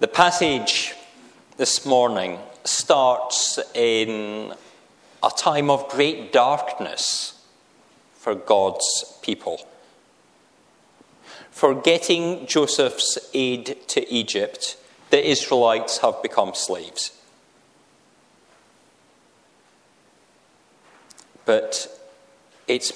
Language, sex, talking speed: English, male, 70 wpm